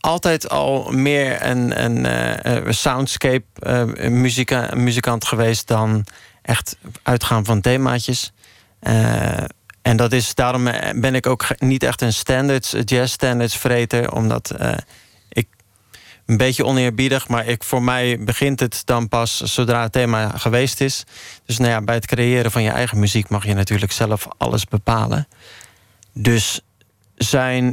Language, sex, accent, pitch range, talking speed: Dutch, male, Dutch, 110-125 Hz, 135 wpm